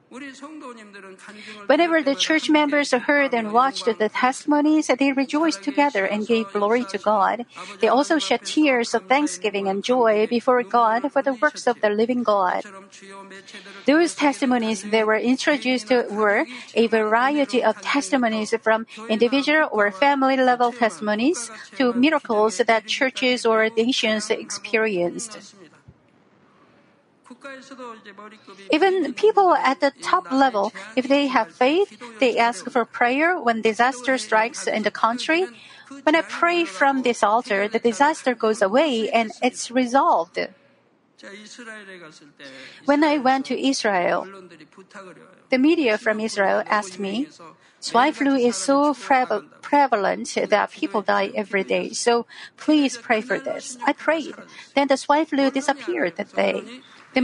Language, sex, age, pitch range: Korean, female, 50-69, 215-280 Hz